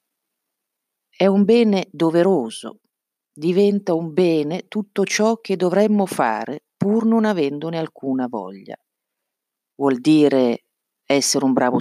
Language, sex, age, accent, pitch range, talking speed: Italian, female, 50-69, native, 140-215 Hz, 110 wpm